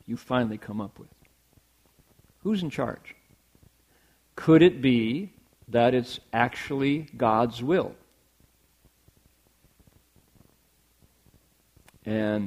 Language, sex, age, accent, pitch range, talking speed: English, male, 50-69, American, 105-130 Hz, 80 wpm